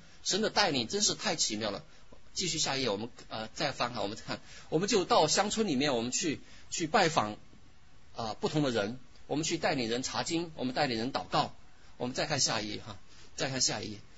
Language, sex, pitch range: Chinese, male, 110-160 Hz